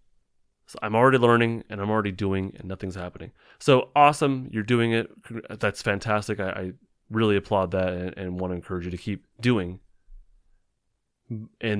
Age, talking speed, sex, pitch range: 30-49, 170 wpm, male, 95-110 Hz